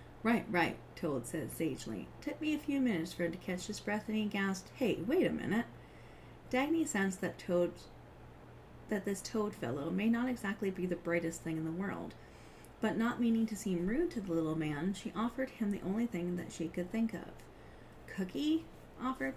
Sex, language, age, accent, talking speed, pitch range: female, English, 30-49, American, 200 wpm, 180-220 Hz